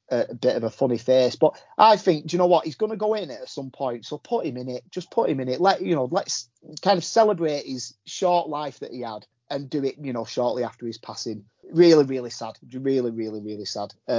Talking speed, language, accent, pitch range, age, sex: 255 wpm, English, British, 115-155 Hz, 30-49, male